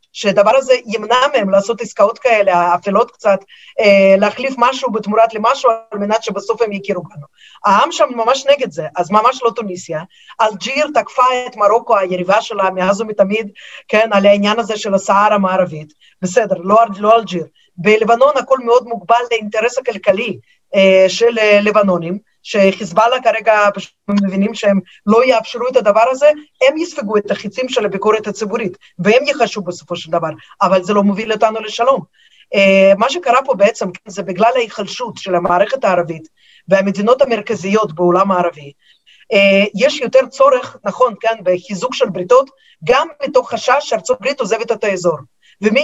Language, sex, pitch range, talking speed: Hebrew, female, 195-250 Hz, 150 wpm